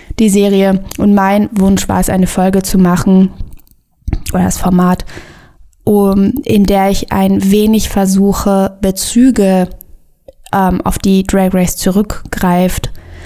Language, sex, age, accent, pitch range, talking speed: German, female, 20-39, German, 180-200 Hz, 125 wpm